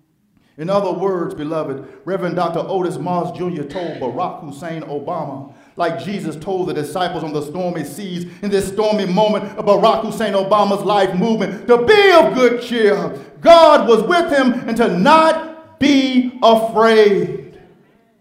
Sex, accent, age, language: male, American, 50-69, English